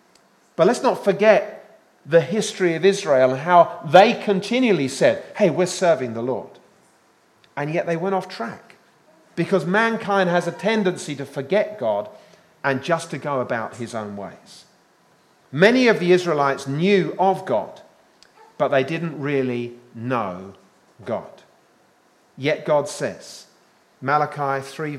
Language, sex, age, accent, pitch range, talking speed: English, male, 40-59, British, 120-180 Hz, 140 wpm